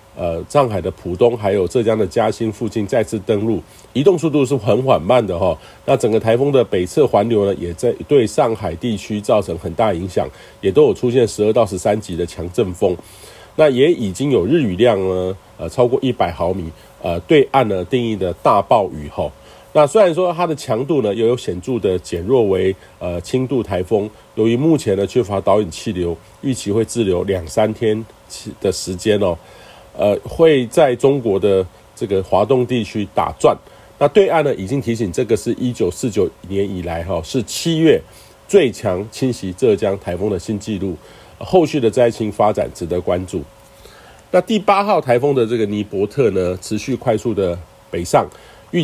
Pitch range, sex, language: 95-125 Hz, male, Chinese